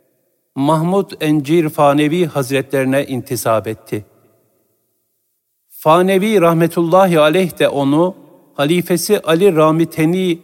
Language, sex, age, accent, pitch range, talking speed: Turkish, male, 50-69, native, 135-175 Hz, 80 wpm